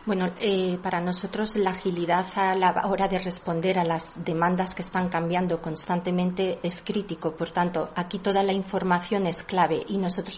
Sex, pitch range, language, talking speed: female, 180-220 Hz, Spanish, 175 wpm